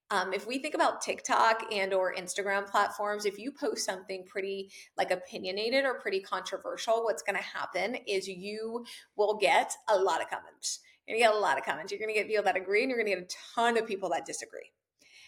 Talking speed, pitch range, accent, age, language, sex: 225 wpm, 195-255 Hz, American, 20-39, English, female